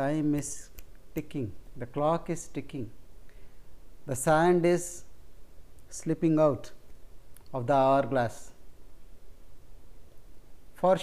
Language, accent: English, Indian